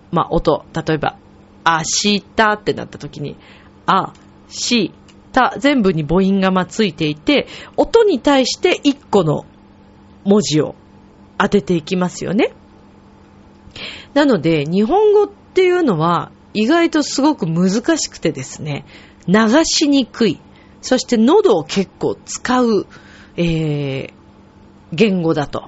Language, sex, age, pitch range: Japanese, female, 40-59, 160-265 Hz